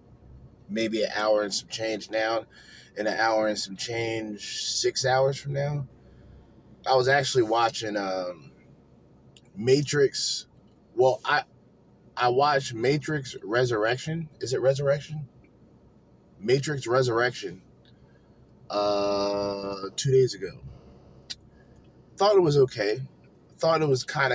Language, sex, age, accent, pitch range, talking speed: English, male, 20-39, American, 105-135 Hz, 115 wpm